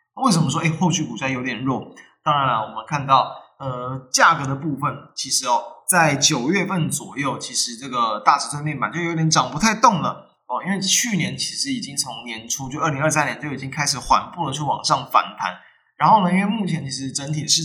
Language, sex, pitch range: Chinese, male, 135-170 Hz